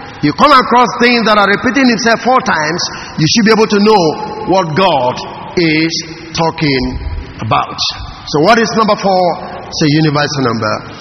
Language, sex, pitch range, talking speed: English, male, 145-210 Hz, 165 wpm